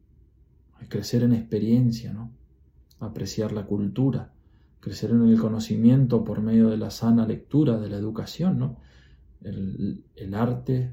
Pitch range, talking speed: 95-120 Hz, 135 wpm